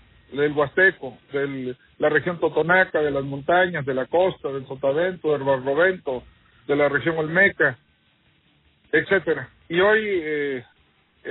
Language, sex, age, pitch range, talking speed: Spanish, male, 50-69, 150-185 Hz, 125 wpm